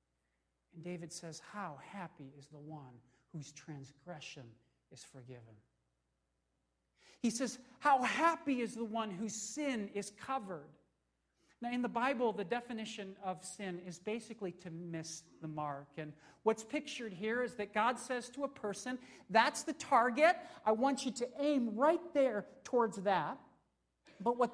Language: English